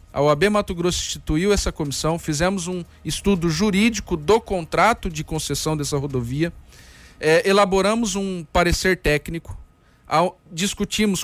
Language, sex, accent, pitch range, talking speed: Portuguese, male, Brazilian, 150-195 Hz, 115 wpm